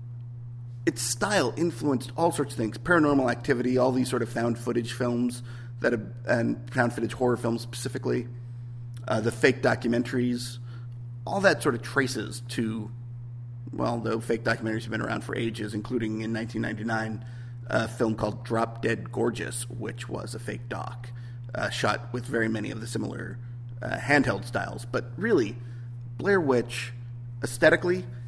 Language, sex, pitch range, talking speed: English, male, 120-125 Hz, 150 wpm